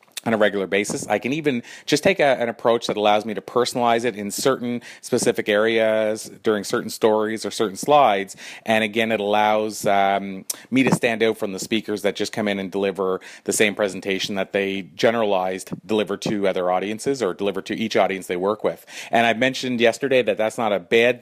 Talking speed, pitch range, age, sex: 205 wpm, 100-115 Hz, 30-49, male